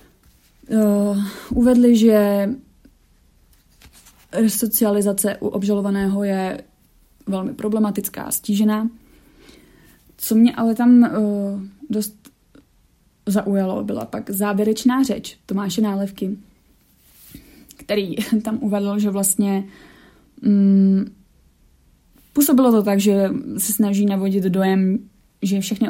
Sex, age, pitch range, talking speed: female, 20-39, 190-220 Hz, 85 wpm